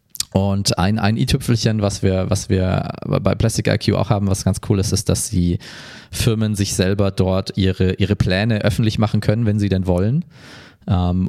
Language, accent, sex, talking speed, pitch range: German, German, male, 185 wpm, 90-110 Hz